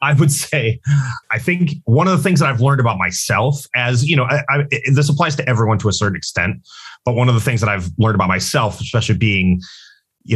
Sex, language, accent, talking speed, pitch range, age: male, English, American, 220 wpm, 95-125 Hz, 30-49